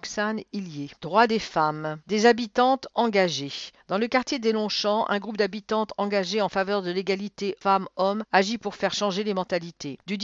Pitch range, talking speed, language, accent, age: 175-205 Hz, 160 wpm, English, French, 50-69